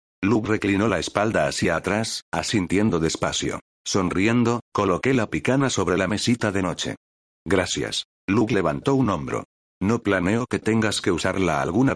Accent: Spanish